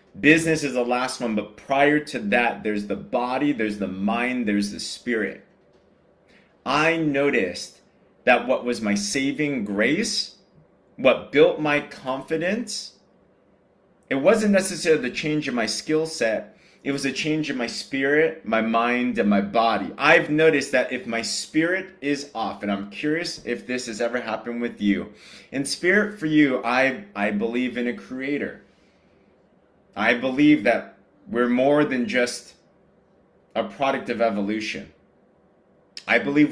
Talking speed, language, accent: 150 wpm, English, American